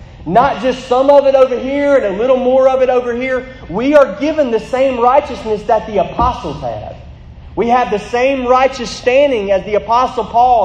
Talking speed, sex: 195 wpm, male